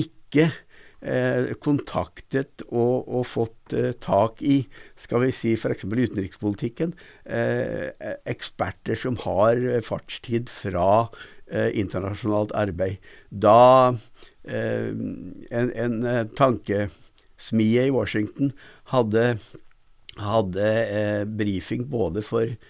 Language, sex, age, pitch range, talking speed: English, male, 60-79, 105-125 Hz, 80 wpm